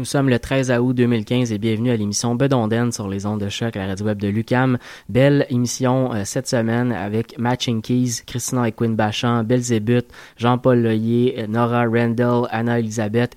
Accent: Canadian